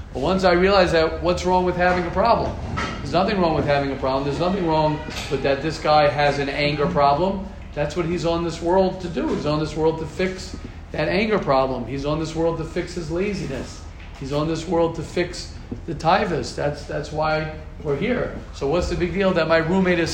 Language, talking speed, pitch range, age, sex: English, 225 wpm, 130-175 Hz, 40-59, male